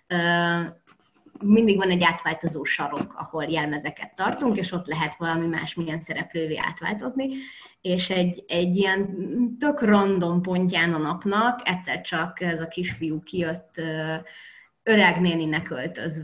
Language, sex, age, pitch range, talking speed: Hungarian, female, 20-39, 170-215 Hz, 120 wpm